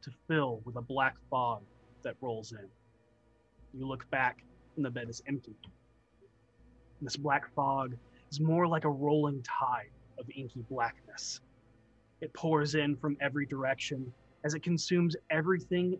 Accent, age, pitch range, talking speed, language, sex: American, 30-49, 130-160 Hz, 145 wpm, English, male